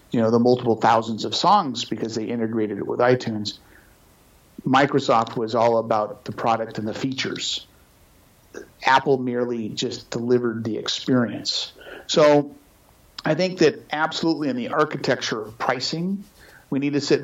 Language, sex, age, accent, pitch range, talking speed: English, male, 50-69, American, 120-155 Hz, 145 wpm